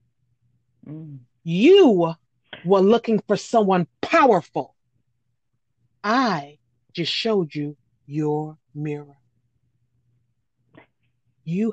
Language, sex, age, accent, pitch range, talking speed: English, female, 40-59, American, 125-180 Hz, 65 wpm